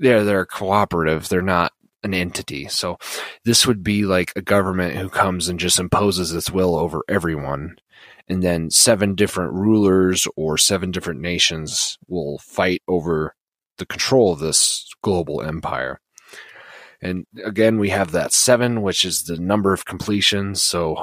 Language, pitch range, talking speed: English, 85-95 Hz, 155 wpm